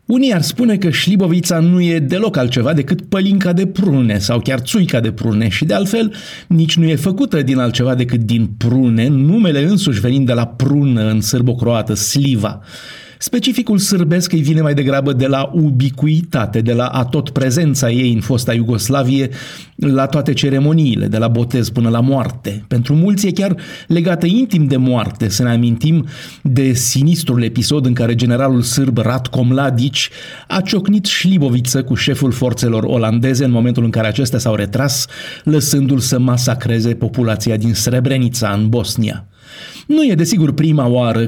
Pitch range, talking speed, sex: 120-155 Hz, 160 wpm, male